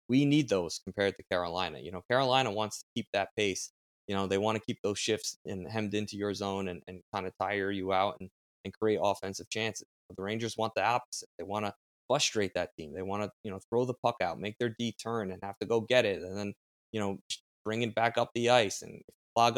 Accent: American